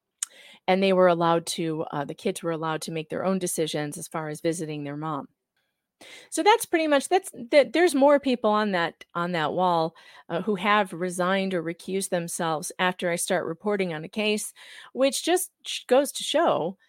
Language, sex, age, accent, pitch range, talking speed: English, female, 40-59, American, 170-220 Hz, 195 wpm